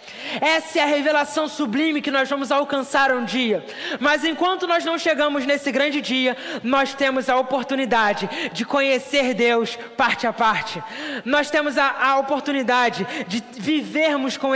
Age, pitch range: 20-39, 265-310 Hz